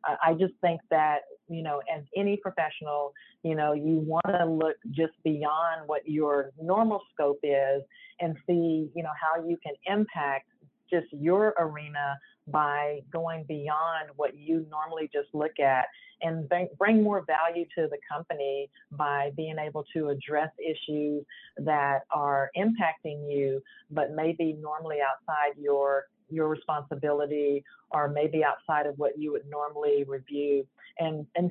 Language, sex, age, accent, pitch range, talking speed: English, female, 50-69, American, 145-165 Hz, 145 wpm